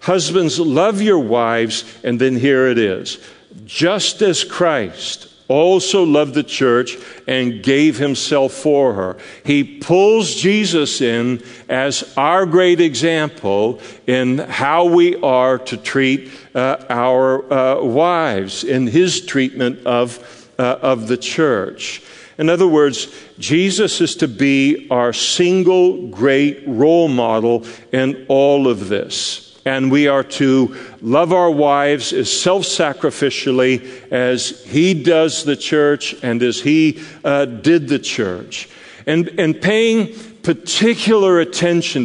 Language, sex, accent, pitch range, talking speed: English, male, American, 130-165 Hz, 125 wpm